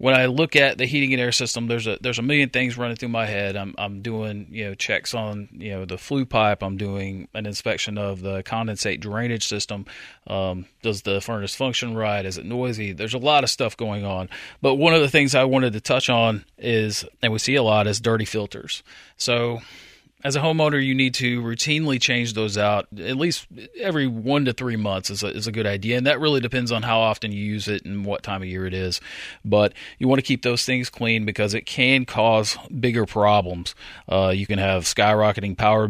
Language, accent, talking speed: English, American, 225 wpm